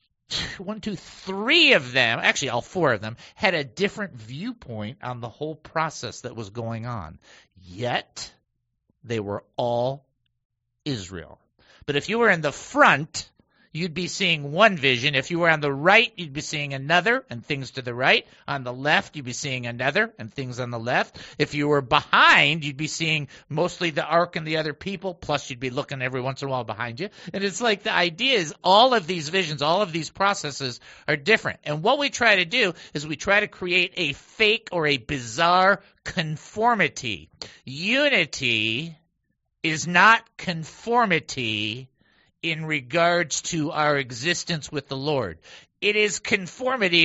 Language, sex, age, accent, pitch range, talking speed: English, male, 50-69, American, 135-190 Hz, 175 wpm